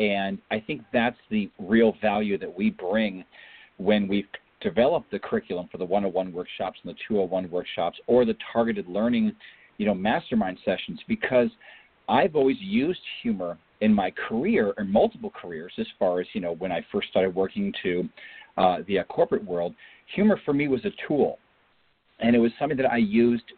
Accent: American